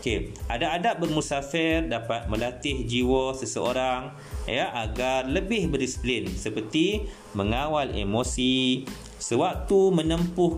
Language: Malay